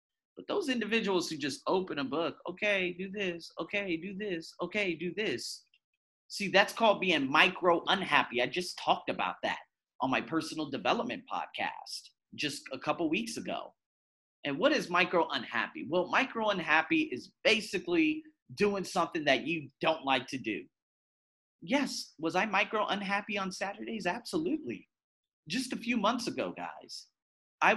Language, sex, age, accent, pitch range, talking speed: English, male, 30-49, American, 165-230 Hz, 145 wpm